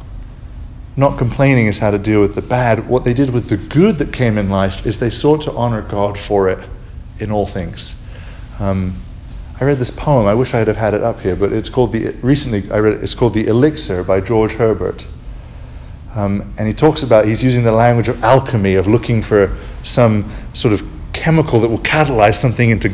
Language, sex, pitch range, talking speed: English, male, 100-130 Hz, 210 wpm